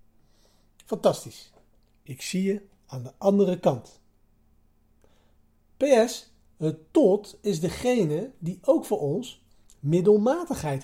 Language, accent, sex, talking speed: Dutch, Dutch, male, 95 wpm